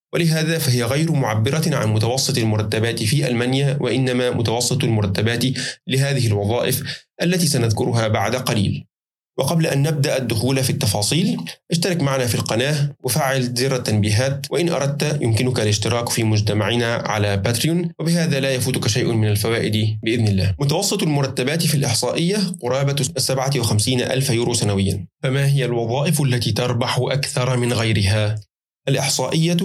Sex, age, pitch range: male, 20-39, 115-145 Hz